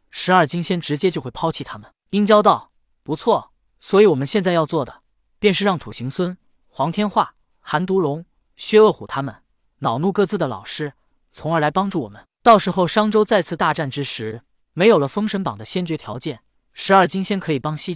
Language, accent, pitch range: Chinese, native, 130-190 Hz